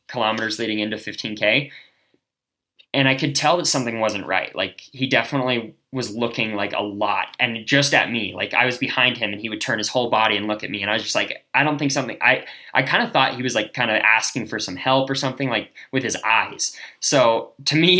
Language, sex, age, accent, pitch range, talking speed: English, male, 20-39, American, 105-130 Hz, 245 wpm